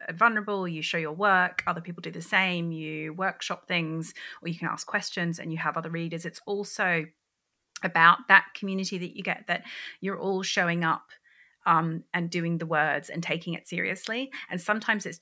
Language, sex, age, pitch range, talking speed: English, female, 30-49, 170-205 Hz, 190 wpm